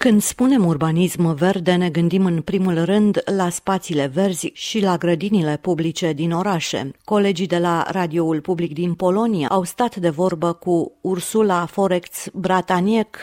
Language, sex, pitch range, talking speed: Romanian, female, 170-205 Hz, 145 wpm